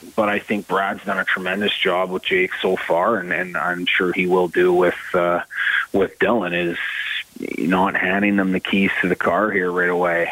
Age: 30-49